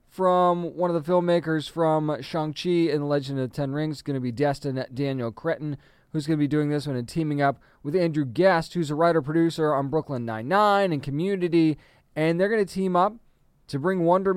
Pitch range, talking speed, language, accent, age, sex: 135-180 Hz, 210 wpm, English, American, 20-39, male